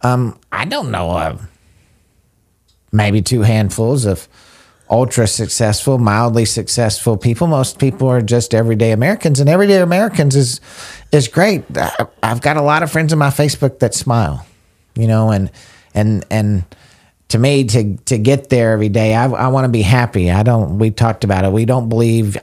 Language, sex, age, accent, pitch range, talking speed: English, male, 40-59, American, 105-135 Hz, 170 wpm